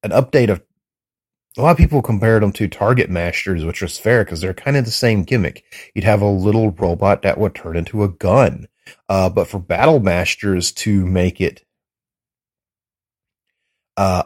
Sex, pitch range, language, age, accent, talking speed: male, 90-110 Hz, English, 30-49, American, 175 wpm